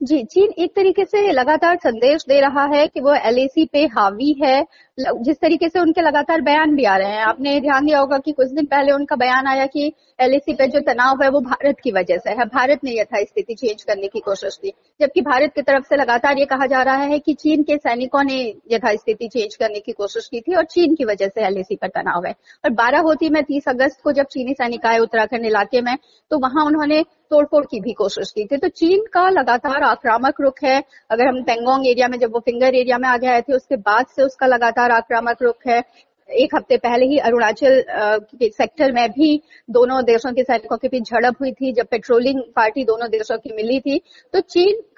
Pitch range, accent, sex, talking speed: 240-300 Hz, native, female, 225 wpm